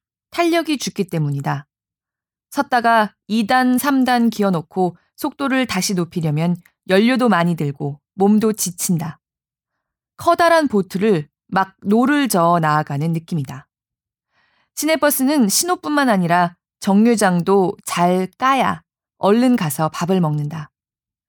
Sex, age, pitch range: female, 20-39, 175-250 Hz